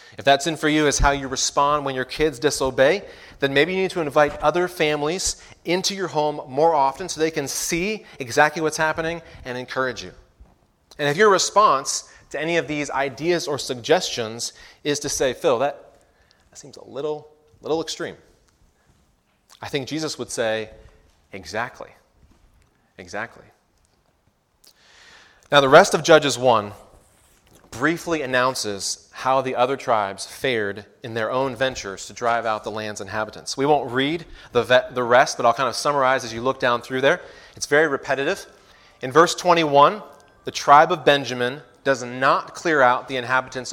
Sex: male